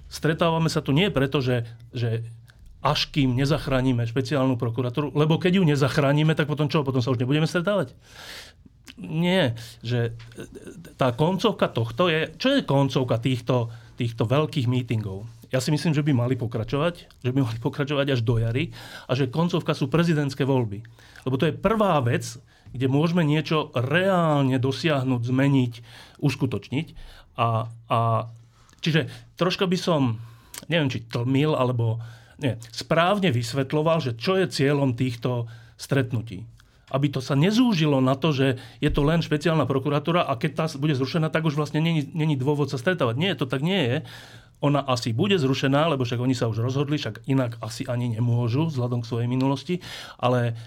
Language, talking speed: Slovak, 160 wpm